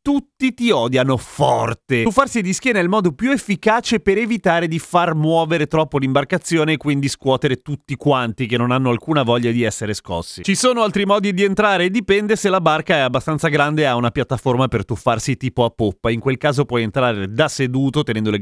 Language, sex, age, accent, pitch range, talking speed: Italian, male, 30-49, native, 125-175 Hz, 210 wpm